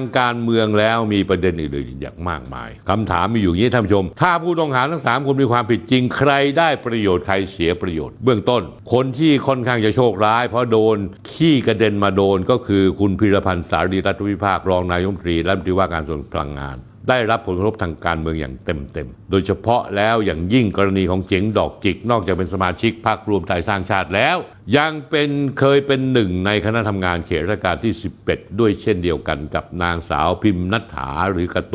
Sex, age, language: male, 60-79, Thai